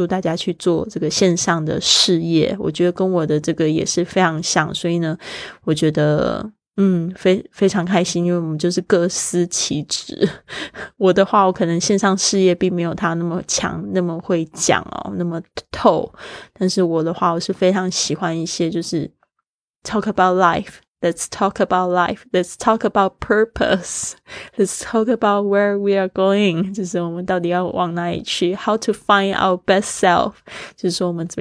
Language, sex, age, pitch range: Chinese, female, 20-39, 170-195 Hz